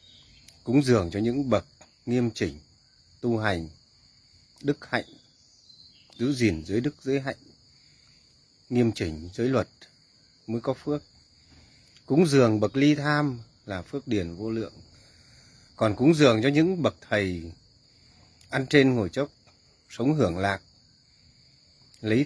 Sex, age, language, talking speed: male, 30-49, Vietnamese, 130 wpm